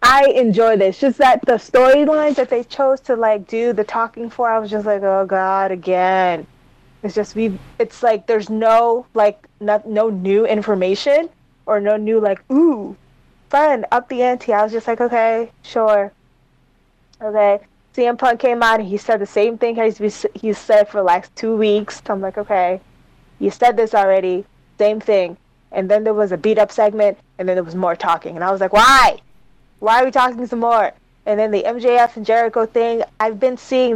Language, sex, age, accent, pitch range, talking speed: English, female, 20-39, American, 195-235 Hz, 200 wpm